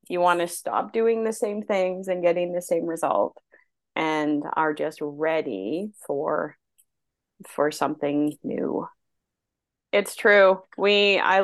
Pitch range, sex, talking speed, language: 160-190 Hz, female, 130 wpm, English